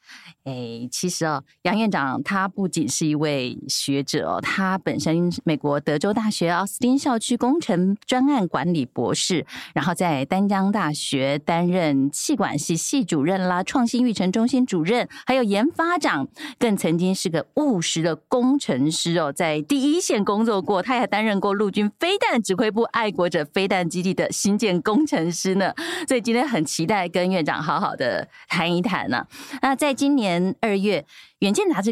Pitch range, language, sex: 165-245 Hz, Chinese, female